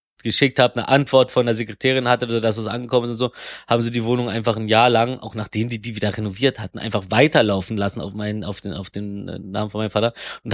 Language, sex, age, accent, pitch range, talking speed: German, male, 20-39, German, 105-130 Hz, 250 wpm